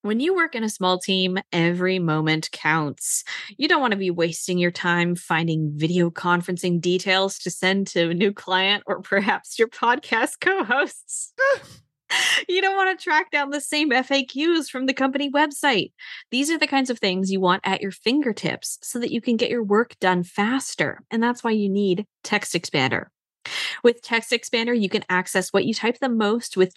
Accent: American